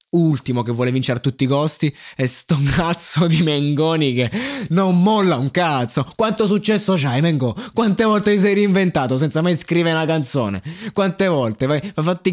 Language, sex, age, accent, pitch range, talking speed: Italian, male, 20-39, native, 130-195 Hz, 175 wpm